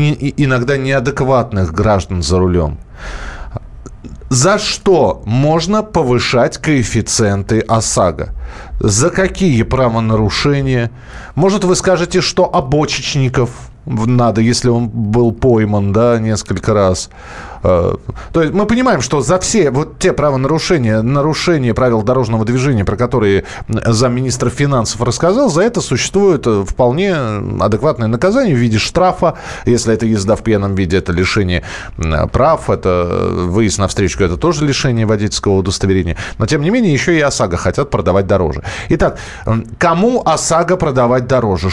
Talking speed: 125 wpm